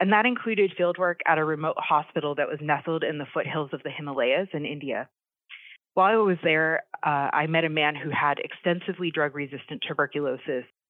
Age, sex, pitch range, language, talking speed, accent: 30-49, female, 145-175 Hz, English, 180 wpm, American